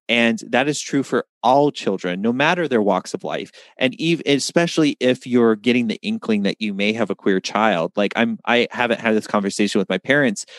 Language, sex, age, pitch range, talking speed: English, male, 30-49, 105-135 Hz, 215 wpm